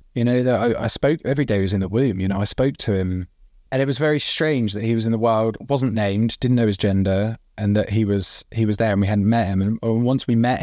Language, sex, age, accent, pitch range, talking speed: English, male, 20-39, British, 100-125 Hz, 290 wpm